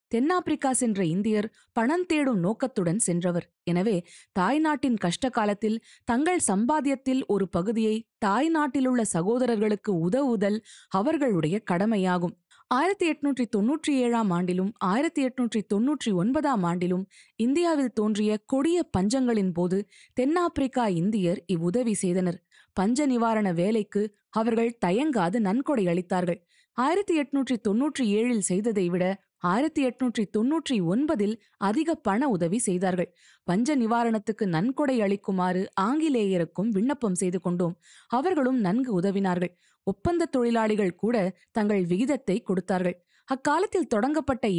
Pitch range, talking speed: 185-260 Hz, 95 wpm